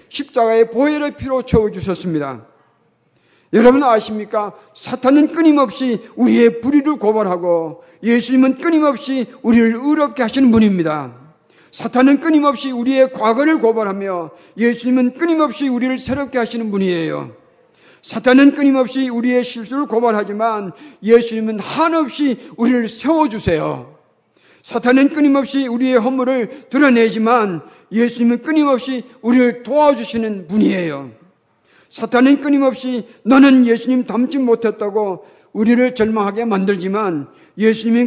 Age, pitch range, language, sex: 50-69, 215-260 Hz, Korean, male